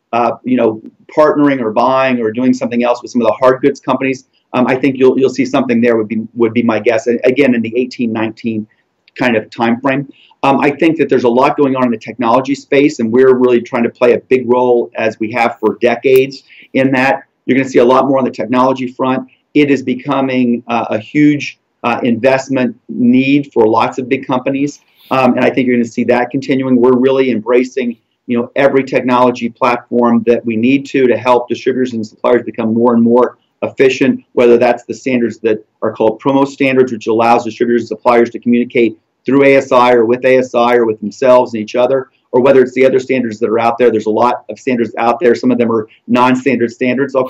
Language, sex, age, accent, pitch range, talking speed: English, male, 40-59, American, 120-135 Hz, 225 wpm